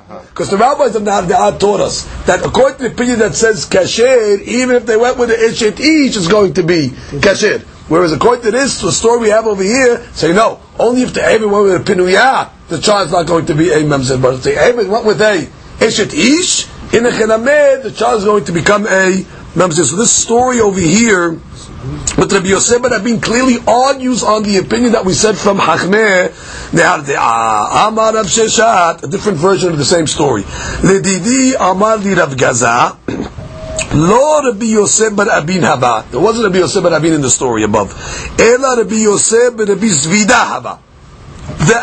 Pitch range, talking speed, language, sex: 190-250 Hz, 195 wpm, English, male